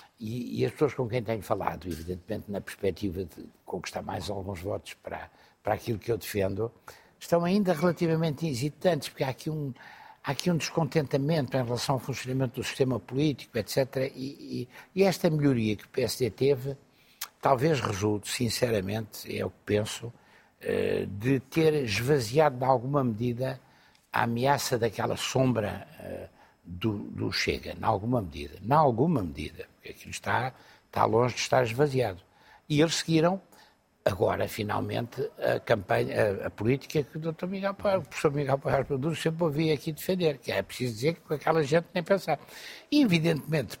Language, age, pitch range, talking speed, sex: Portuguese, 60-79, 115-160 Hz, 165 wpm, male